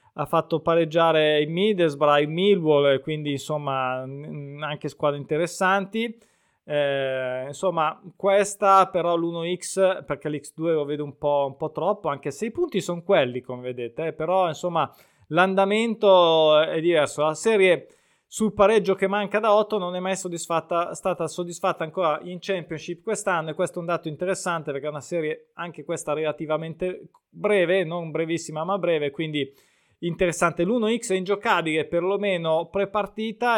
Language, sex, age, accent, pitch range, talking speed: Italian, male, 20-39, native, 150-195 Hz, 150 wpm